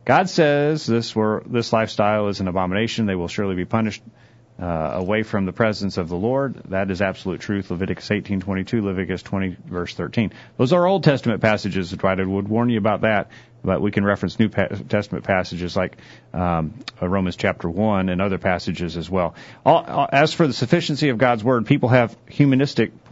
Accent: American